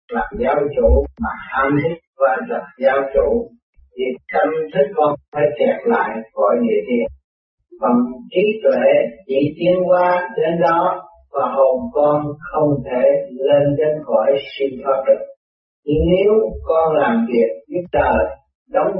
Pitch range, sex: 135-210 Hz, male